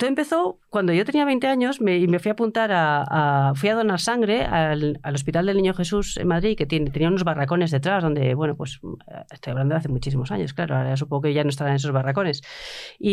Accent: Spanish